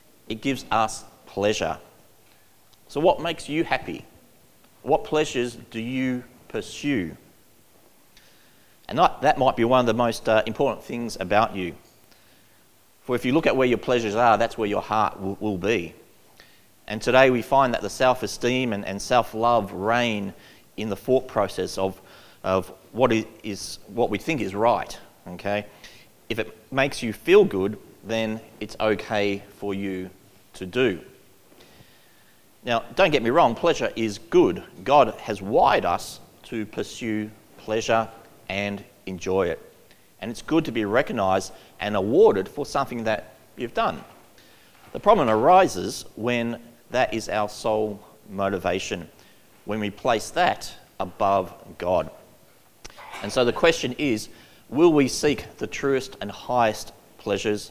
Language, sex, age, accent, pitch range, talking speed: English, male, 30-49, Australian, 100-125 Hz, 145 wpm